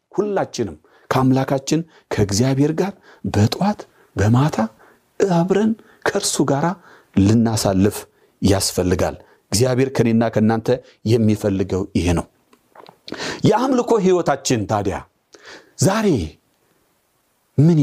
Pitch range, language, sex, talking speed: 110-150 Hz, Amharic, male, 75 wpm